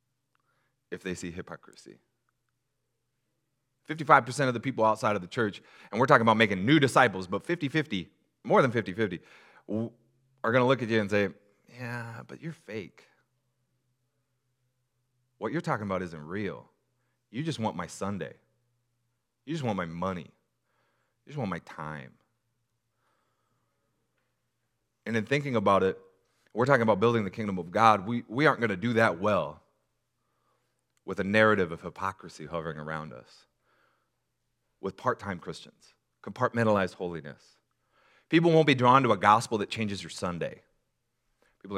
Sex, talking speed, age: male, 145 wpm, 30-49